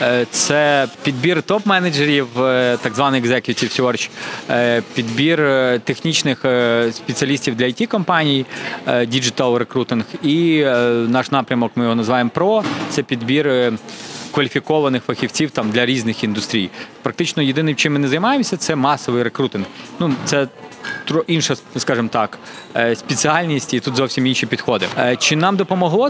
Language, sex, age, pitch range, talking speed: Ukrainian, male, 20-39, 125-150 Hz, 120 wpm